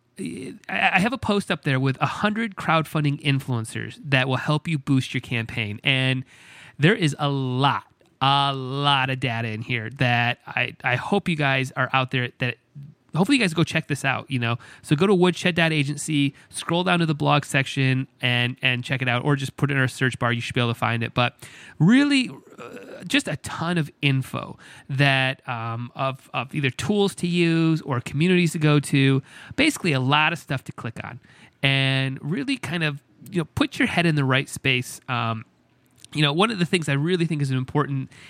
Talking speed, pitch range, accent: 205 wpm, 130-165 Hz, American